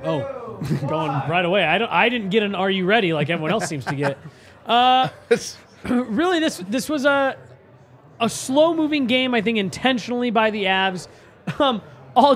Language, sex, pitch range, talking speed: English, male, 185-250 Hz, 175 wpm